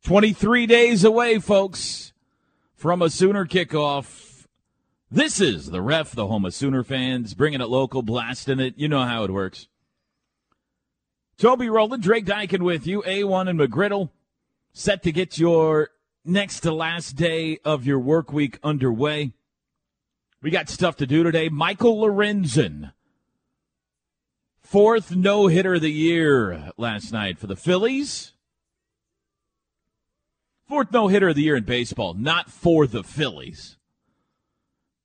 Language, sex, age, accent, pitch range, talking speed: English, male, 40-59, American, 120-190 Hz, 130 wpm